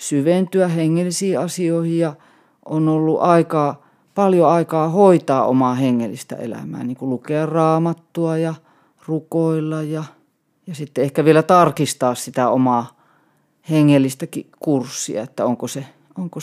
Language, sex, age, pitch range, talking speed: Finnish, female, 30-49, 135-170 Hz, 120 wpm